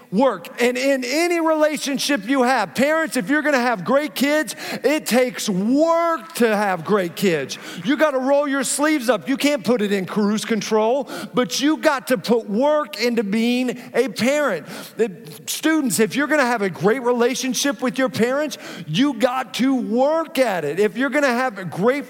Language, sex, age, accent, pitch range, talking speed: English, male, 40-59, American, 170-270 Hz, 190 wpm